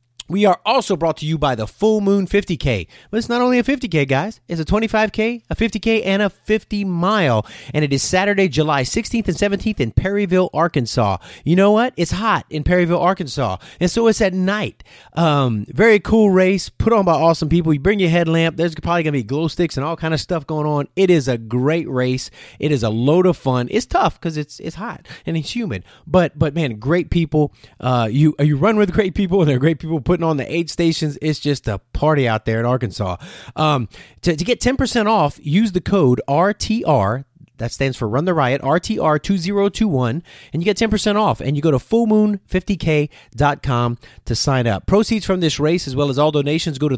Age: 30-49